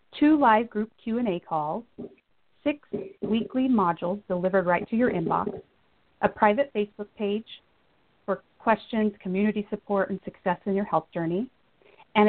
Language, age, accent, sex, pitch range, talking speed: English, 30-49, American, female, 190-235 Hz, 135 wpm